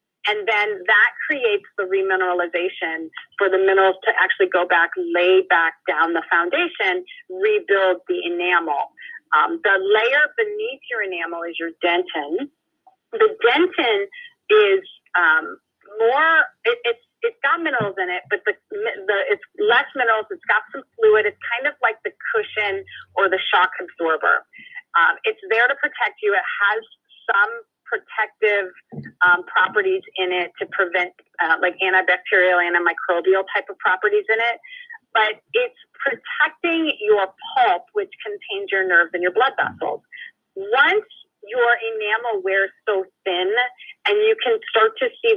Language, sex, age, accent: Chinese, female, 30-49, American